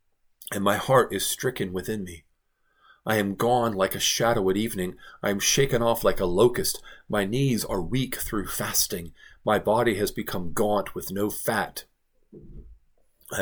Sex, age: male, 40-59